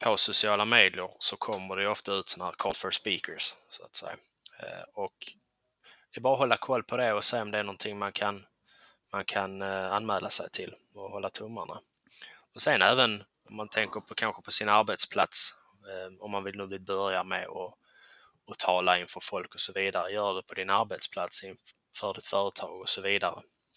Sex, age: male, 20-39